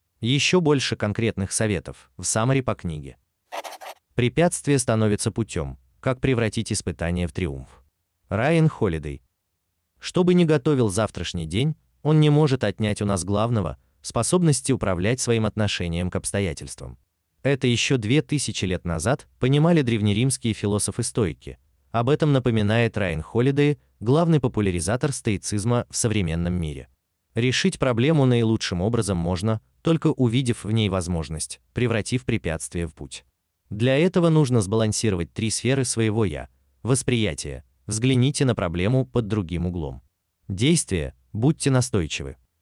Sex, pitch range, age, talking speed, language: male, 85-130 Hz, 30-49, 130 wpm, Russian